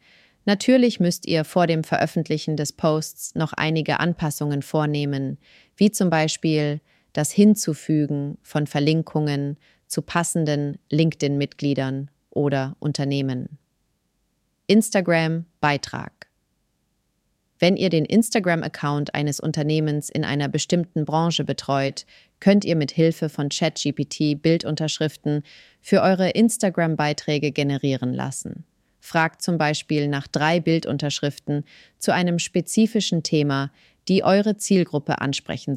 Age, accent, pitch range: 30-49, German, 145-170 Hz